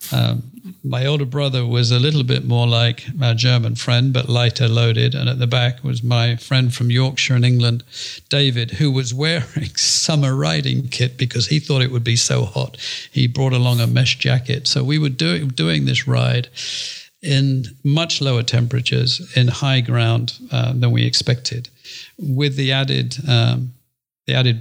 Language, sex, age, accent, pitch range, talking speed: English, male, 50-69, British, 120-140 Hz, 175 wpm